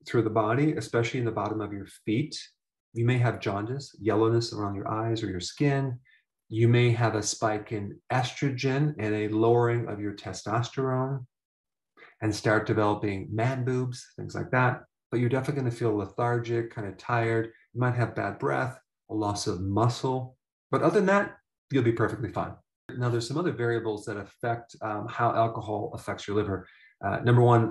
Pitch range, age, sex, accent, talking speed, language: 105-120 Hz, 30-49, male, American, 185 wpm, English